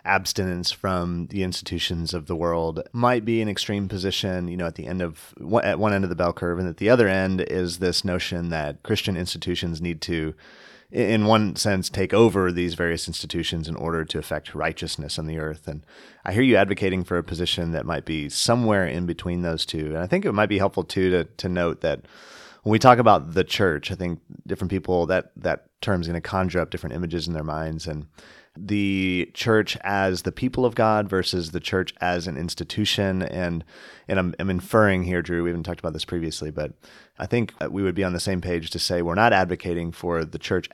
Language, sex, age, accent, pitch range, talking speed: English, male, 30-49, American, 85-95 Hz, 220 wpm